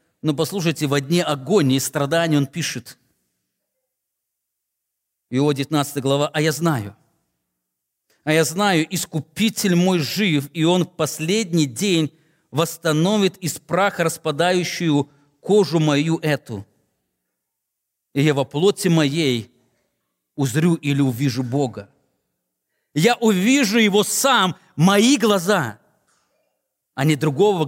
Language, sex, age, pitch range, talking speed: English, male, 40-59, 125-175 Hz, 110 wpm